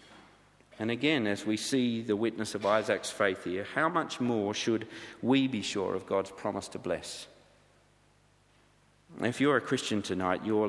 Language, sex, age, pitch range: English, male, 50-69, 110-135 Hz